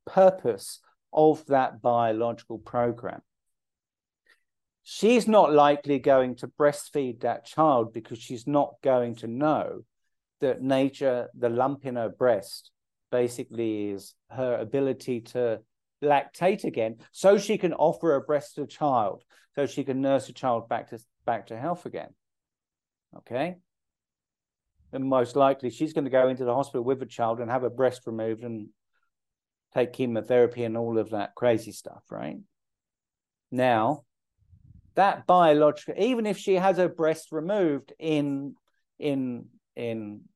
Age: 50-69